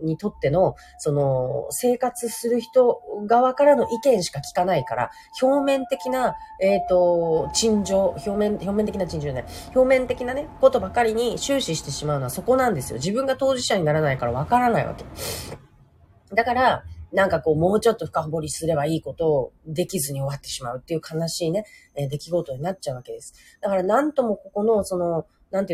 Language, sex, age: Japanese, female, 30-49